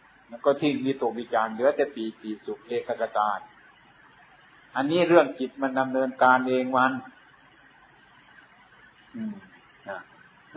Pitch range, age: 130-190 Hz, 60-79